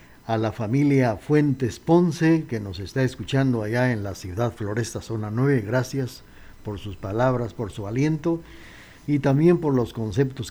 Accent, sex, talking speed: Mexican, male, 160 wpm